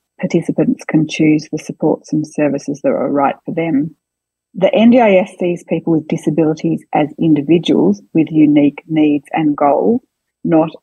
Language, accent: English, Australian